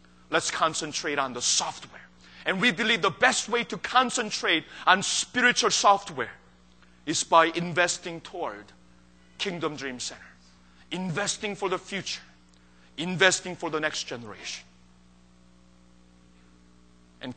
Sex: male